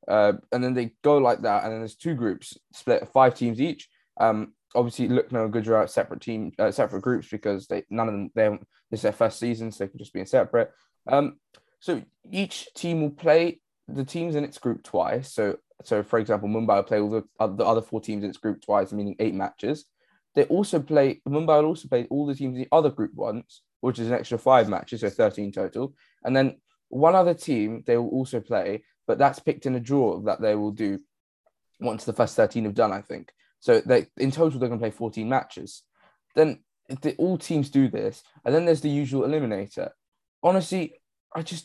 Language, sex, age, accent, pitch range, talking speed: English, male, 10-29, British, 115-150 Hz, 220 wpm